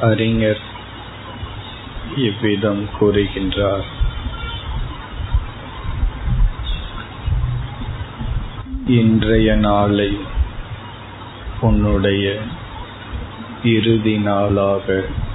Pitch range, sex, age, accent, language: 100-115 Hz, male, 50-69, native, Tamil